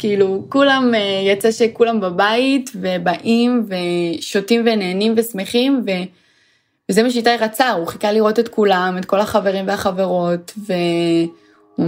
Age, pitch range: 20-39, 180-230 Hz